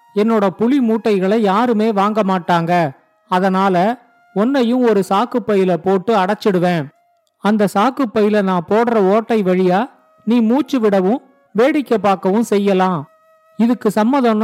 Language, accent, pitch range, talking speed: Tamil, native, 190-235 Hz, 110 wpm